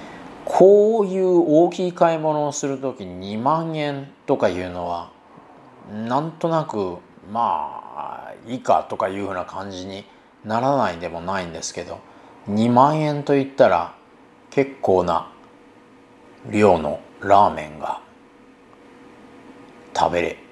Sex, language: male, Japanese